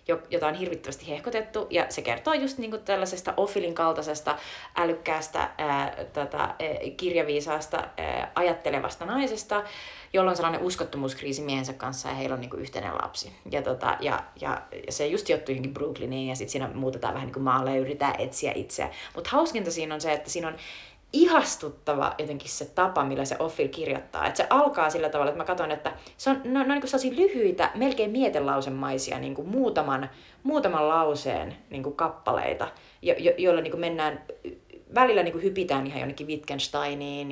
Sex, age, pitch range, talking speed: female, 30-49, 145-210 Hz, 165 wpm